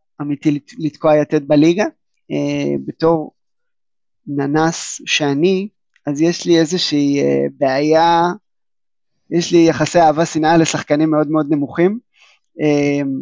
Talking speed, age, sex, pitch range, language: 115 wpm, 20-39, male, 145-170 Hz, Hebrew